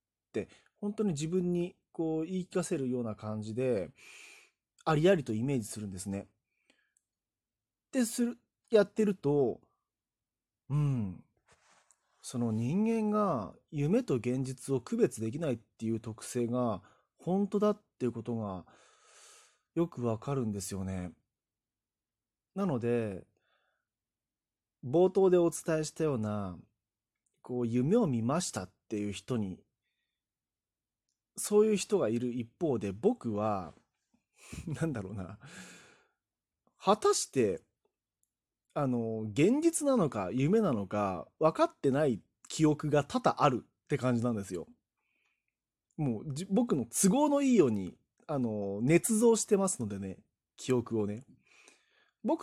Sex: male